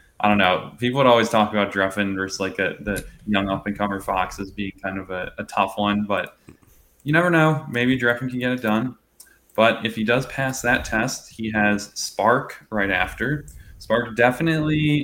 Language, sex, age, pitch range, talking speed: English, male, 10-29, 100-120 Hz, 190 wpm